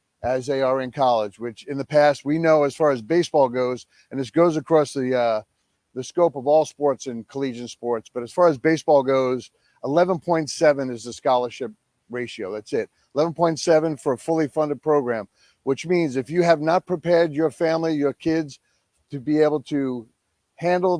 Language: English